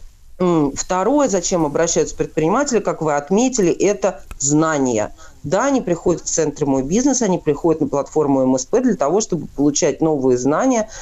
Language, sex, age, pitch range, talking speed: Russian, female, 40-59, 155-220 Hz, 145 wpm